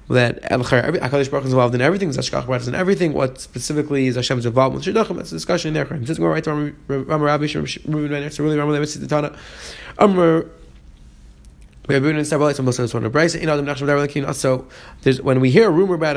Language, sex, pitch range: English, male, 135-170 Hz